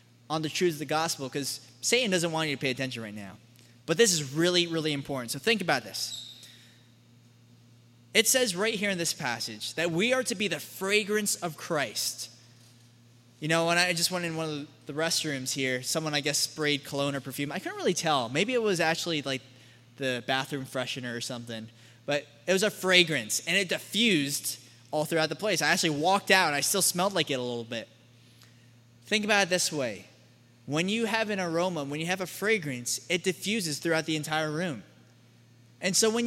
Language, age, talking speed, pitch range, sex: English, 10-29, 205 wpm, 120-190 Hz, male